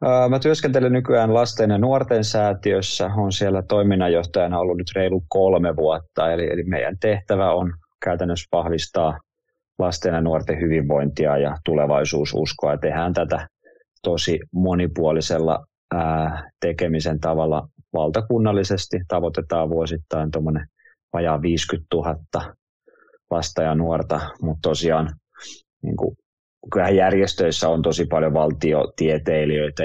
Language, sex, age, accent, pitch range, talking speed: Finnish, male, 20-39, native, 80-95 Hz, 105 wpm